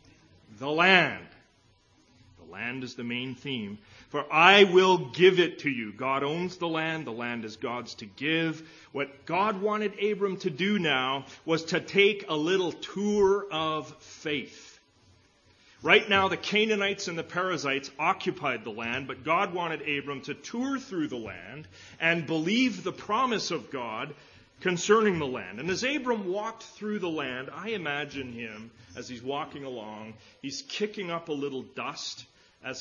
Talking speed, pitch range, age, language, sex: 165 wpm, 125-180 Hz, 40-59, English, male